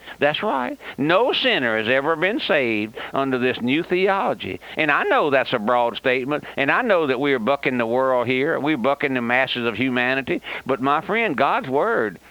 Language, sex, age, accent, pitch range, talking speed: English, male, 60-79, American, 135-185 Hz, 195 wpm